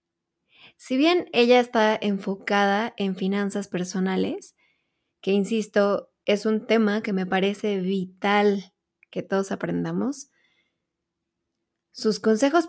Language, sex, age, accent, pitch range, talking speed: Spanish, female, 20-39, Mexican, 195-245 Hz, 105 wpm